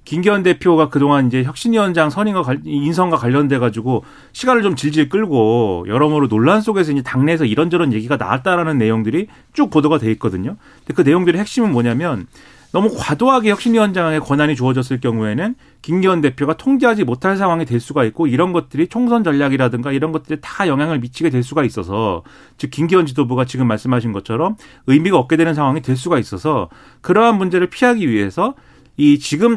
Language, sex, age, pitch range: Korean, male, 40-59, 125-180 Hz